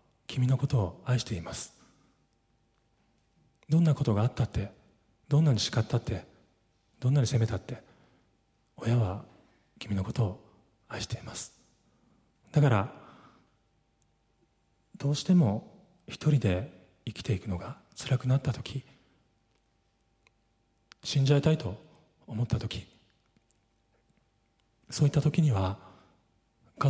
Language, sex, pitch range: Japanese, male, 105-140 Hz